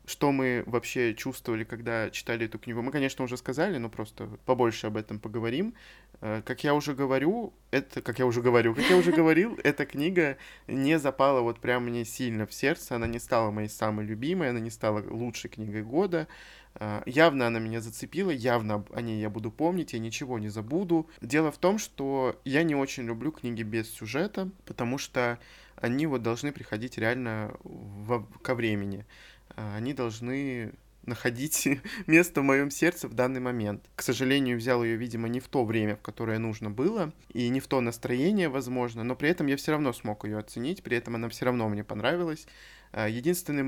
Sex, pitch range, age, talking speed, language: male, 115-140 Hz, 20-39, 185 wpm, Russian